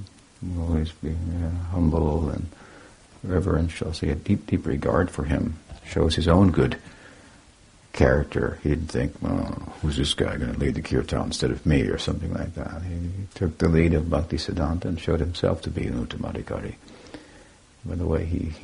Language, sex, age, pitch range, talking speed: English, male, 60-79, 80-95 Hz, 190 wpm